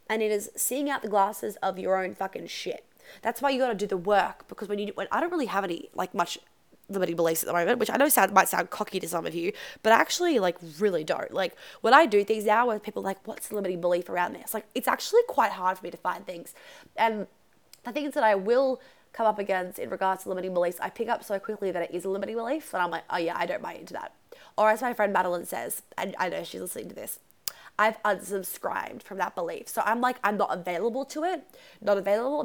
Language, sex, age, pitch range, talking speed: English, female, 20-39, 190-255 Hz, 265 wpm